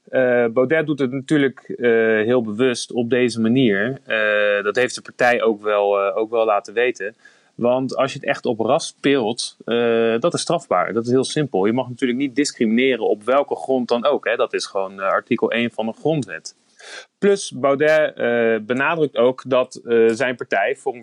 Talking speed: 190 wpm